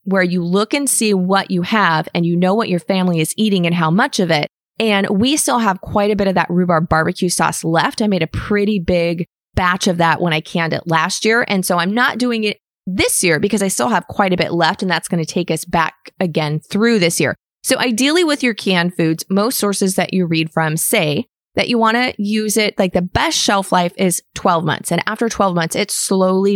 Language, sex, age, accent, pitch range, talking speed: English, female, 20-39, American, 170-210 Hz, 245 wpm